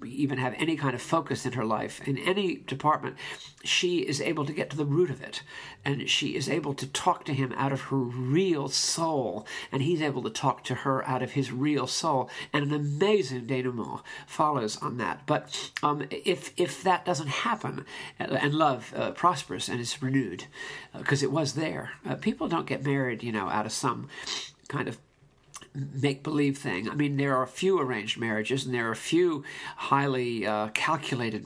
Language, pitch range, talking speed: English, 125-150 Hz, 195 wpm